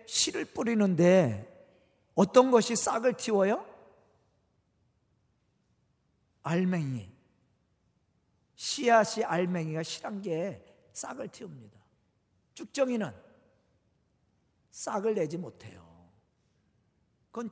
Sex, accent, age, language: male, native, 40-59, Korean